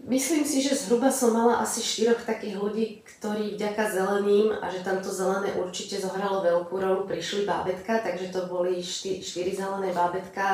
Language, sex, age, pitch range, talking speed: Slovak, female, 30-49, 180-200 Hz, 170 wpm